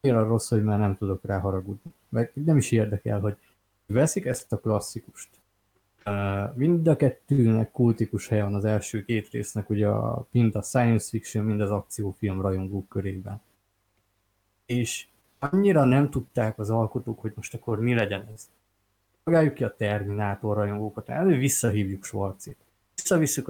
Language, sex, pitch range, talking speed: Hungarian, male, 105-120 Hz, 150 wpm